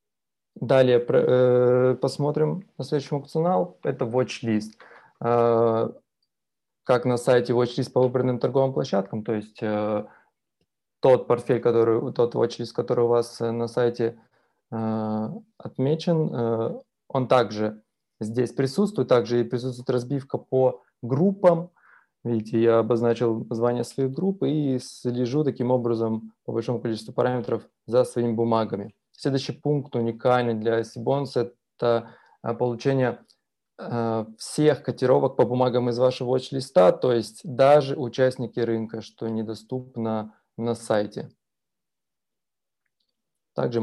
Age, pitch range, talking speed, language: 20-39, 115-135 Hz, 115 wpm, Russian